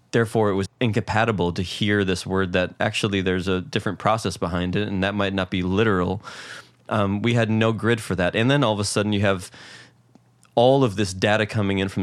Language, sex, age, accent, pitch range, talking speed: English, male, 20-39, American, 95-110 Hz, 220 wpm